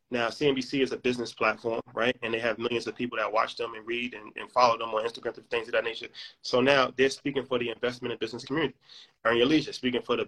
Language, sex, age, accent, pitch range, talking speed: English, male, 20-39, American, 115-140 Hz, 265 wpm